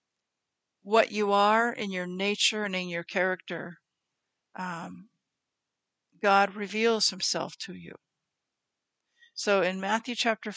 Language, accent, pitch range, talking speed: English, American, 180-215 Hz, 115 wpm